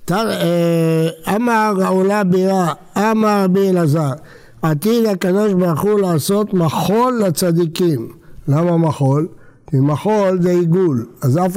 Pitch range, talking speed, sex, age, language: 155-195 Hz, 110 wpm, male, 60-79, Hebrew